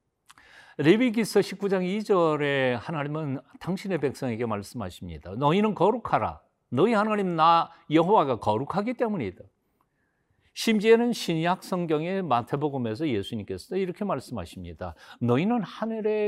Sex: male